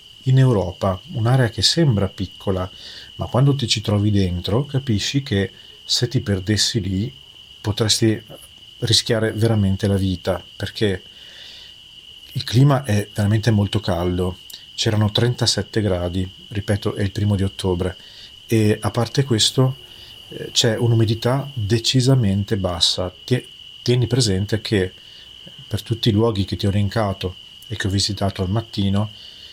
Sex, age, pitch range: male, 40-59, 95-115 Hz